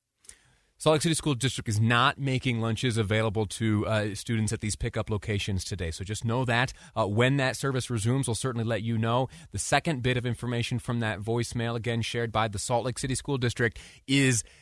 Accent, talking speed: American, 205 wpm